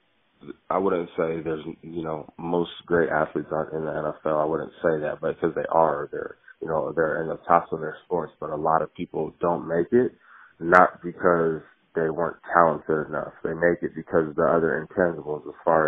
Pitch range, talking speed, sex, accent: 80-90 Hz, 205 wpm, male, American